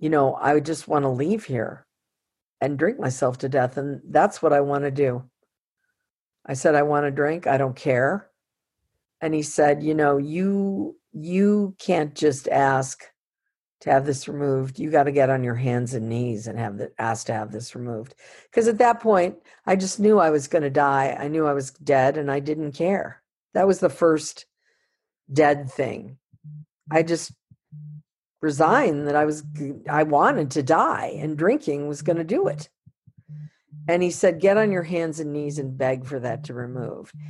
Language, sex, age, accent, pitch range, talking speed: English, female, 50-69, American, 140-165 Hz, 195 wpm